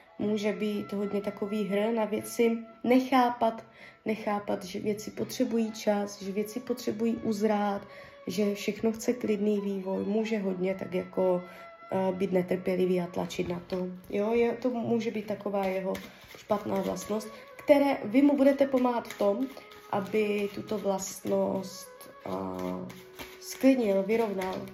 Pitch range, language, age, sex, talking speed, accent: 200-240 Hz, Czech, 20-39, female, 135 wpm, native